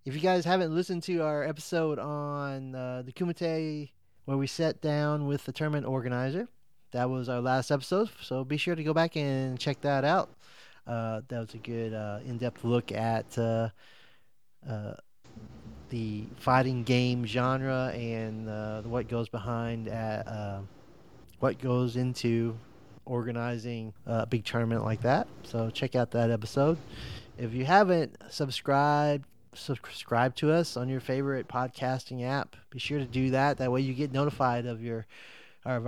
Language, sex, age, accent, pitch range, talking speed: English, male, 30-49, American, 120-140 Hz, 160 wpm